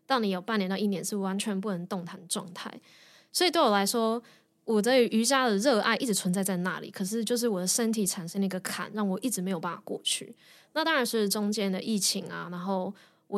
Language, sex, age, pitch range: Chinese, female, 20-39, 185-225 Hz